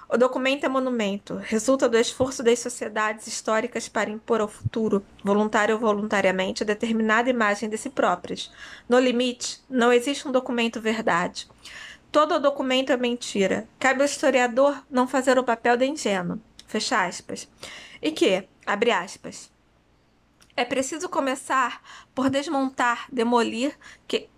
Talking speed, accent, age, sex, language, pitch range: 140 wpm, Brazilian, 20-39, female, Portuguese, 220-260 Hz